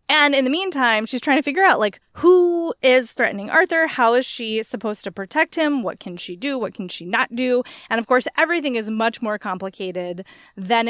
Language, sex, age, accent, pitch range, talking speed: English, female, 20-39, American, 210-295 Hz, 215 wpm